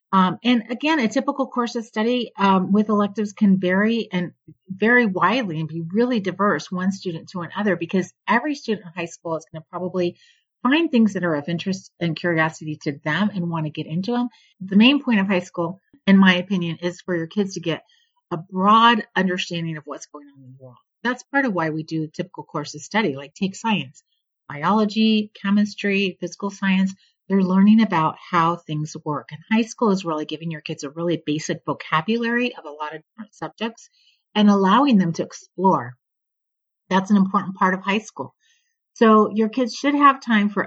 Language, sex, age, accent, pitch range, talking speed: English, female, 40-59, American, 170-220 Hz, 200 wpm